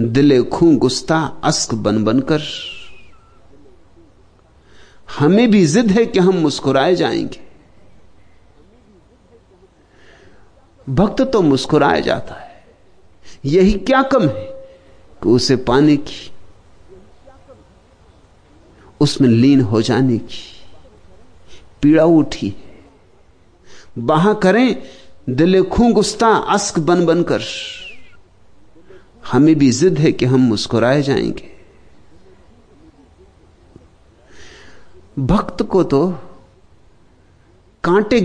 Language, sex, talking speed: Danish, male, 70 wpm